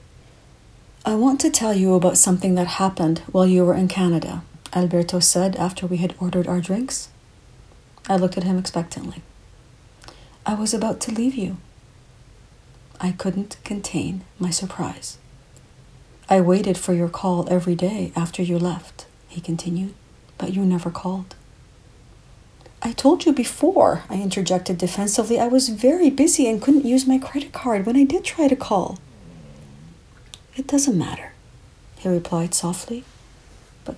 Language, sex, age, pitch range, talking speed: English, female, 40-59, 130-215 Hz, 150 wpm